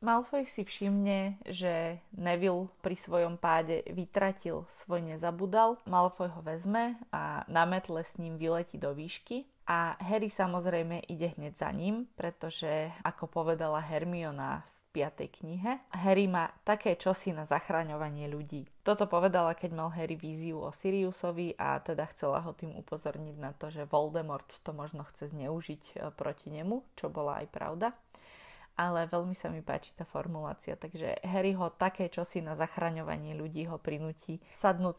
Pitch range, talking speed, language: 160-190 Hz, 155 wpm, Slovak